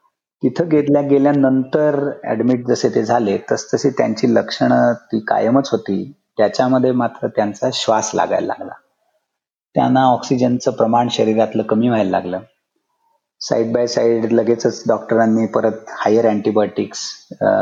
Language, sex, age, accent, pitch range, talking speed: Marathi, male, 30-49, native, 110-130 Hz, 100 wpm